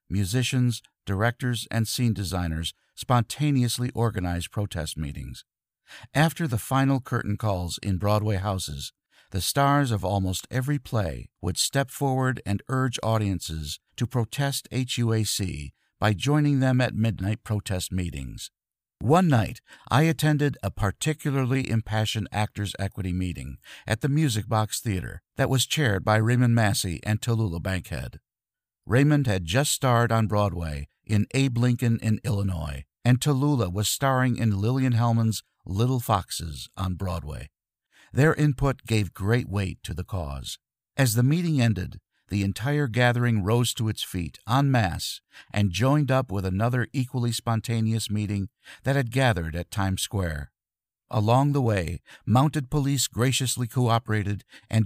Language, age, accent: English, 50-69, American